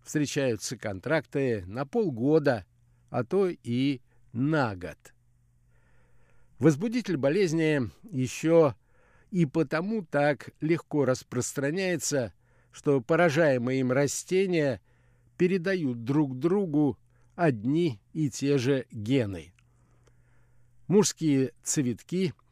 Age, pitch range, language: 60-79, 120-155 Hz, Russian